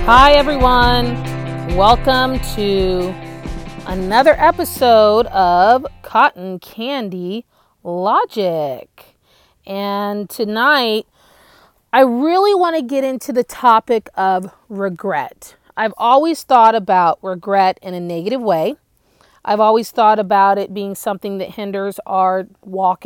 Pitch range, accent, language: 185-230 Hz, American, English